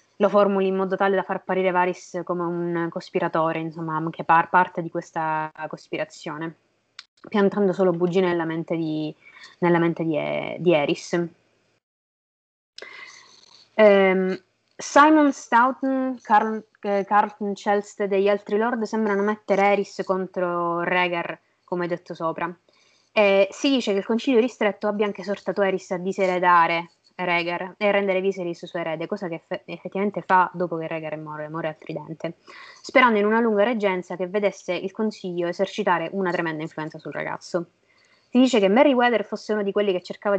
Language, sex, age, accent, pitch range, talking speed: Italian, female, 20-39, native, 170-205 Hz, 160 wpm